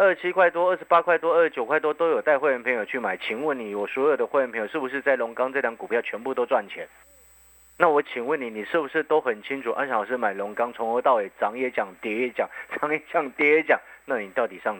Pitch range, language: 110-150 Hz, Chinese